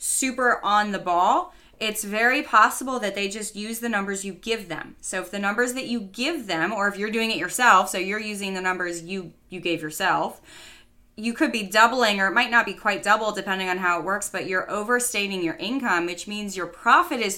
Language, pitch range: English, 190-245 Hz